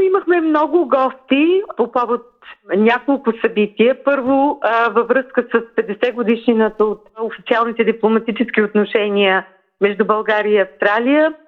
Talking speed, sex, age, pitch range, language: 110 wpm, female, 40-59, 205-245 Hz, Bulgarian